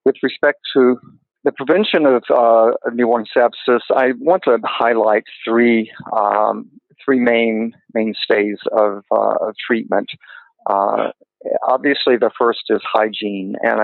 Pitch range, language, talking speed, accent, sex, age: 105-115 Hz, English, 125 wpm, American, male, 50-69